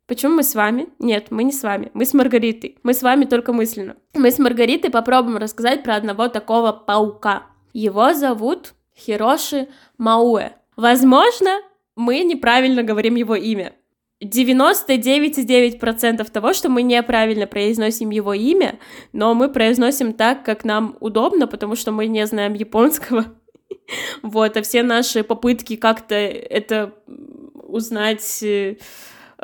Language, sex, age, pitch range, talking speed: Russian, female, 10-29, 220-260 Hz, 135 wpm